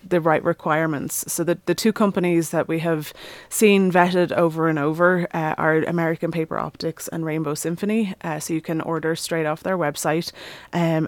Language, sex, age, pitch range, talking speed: English, female, 20-39, 155-170 Hz, 185 wpm